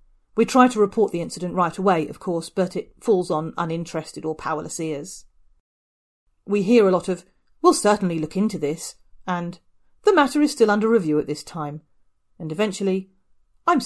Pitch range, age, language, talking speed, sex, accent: 150-205 Hz, 40-59, English, 180 wpm, female, British